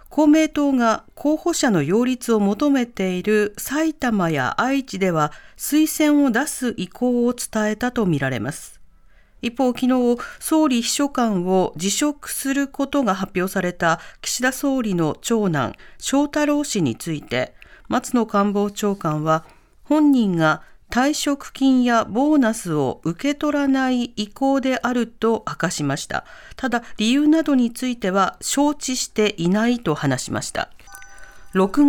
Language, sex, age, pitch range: Japanese, female, 40-59, 180-275 Hz